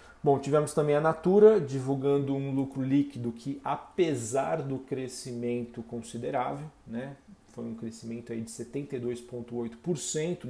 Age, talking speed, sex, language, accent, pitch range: 40-59, 120 wpm, male, Portuguese, Brazilian, 120-140 Hz